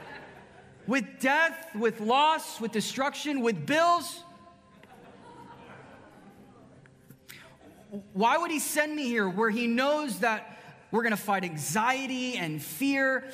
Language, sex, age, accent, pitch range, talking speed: English, male, 30-49, American, 200-290 Hz, 115 wpm